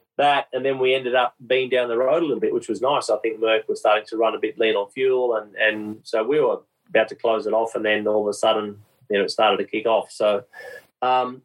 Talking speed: 280 wpm